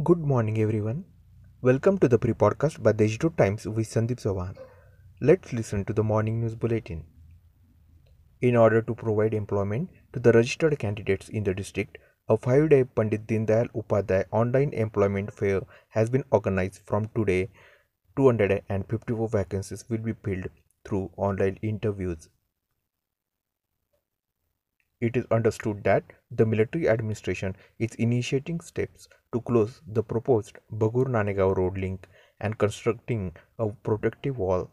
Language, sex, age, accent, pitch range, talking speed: Marathi, male, 30-49, native, 100-120 Hz, 135 wpm